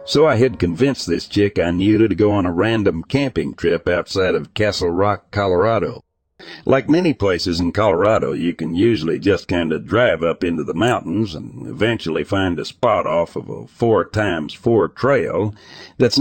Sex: male